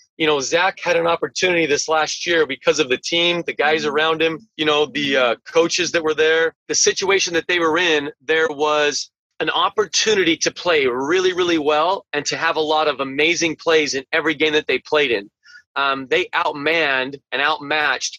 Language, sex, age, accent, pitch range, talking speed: English, male, 30-49, American, 150-175 Hz, 200 wpm